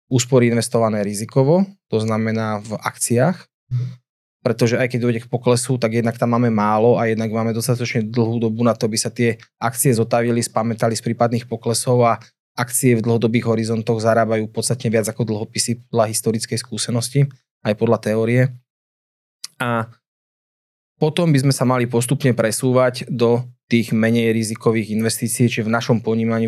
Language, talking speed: Slovak, 155 wpm